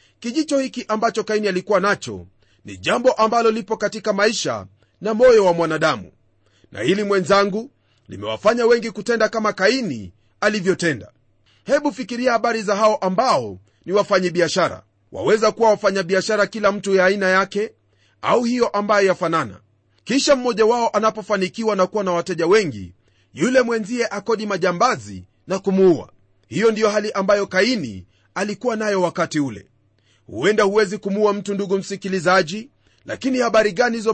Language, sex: Swahili, male